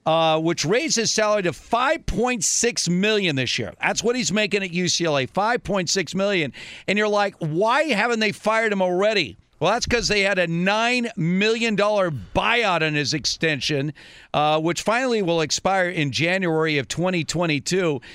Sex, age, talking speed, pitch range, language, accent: male, 50-69, 160 wpm, 150-210 Hz, English, American